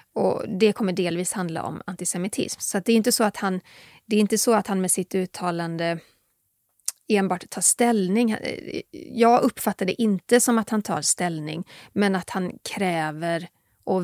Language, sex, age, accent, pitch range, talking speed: English, female, 30-49, Swedish, 175-230 Hz, 175 wpm